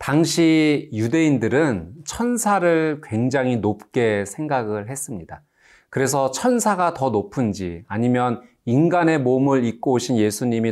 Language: Korean